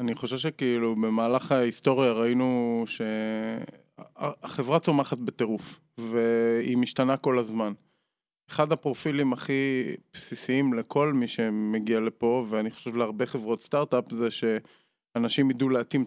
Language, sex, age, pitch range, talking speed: Hebrew, male, 20-39, 115-135 Hz, 110 wpm